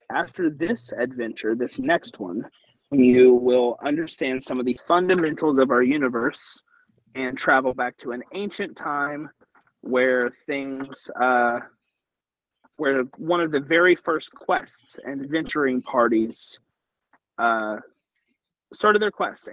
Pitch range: 125-165 Hz